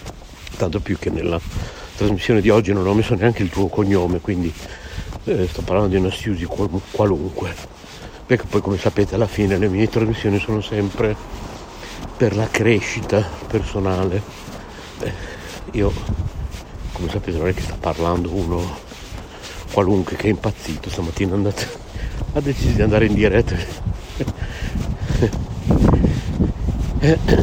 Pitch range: 90-110 Hz